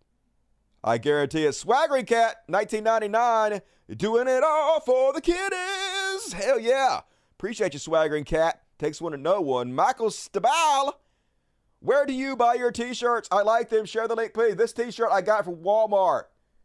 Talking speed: 160 wpm